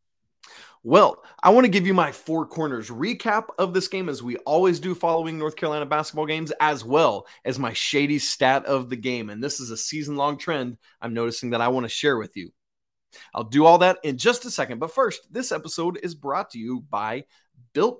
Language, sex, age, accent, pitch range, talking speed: English, male, 30-49, American, 130-190 Hz, 215 wpm